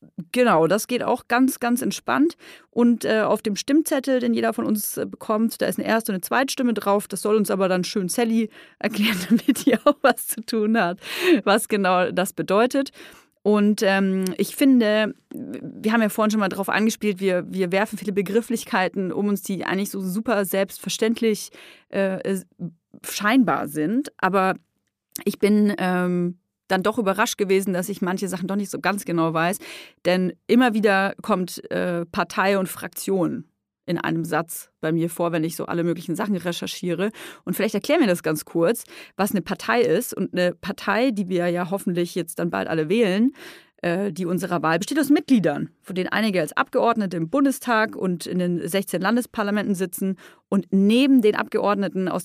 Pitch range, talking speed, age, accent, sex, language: 185-235 Hz, 185 wpm, 30-49, German, female, German